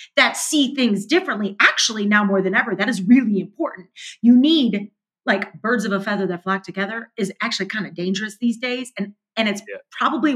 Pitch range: 200-265 Hz